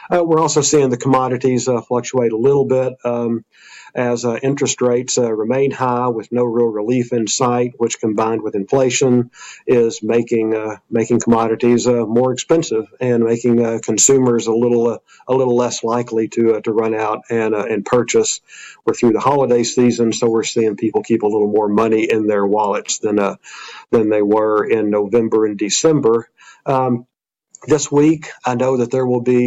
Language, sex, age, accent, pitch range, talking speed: English, male, 50-69, American, 110-125 Hz, 185 wpm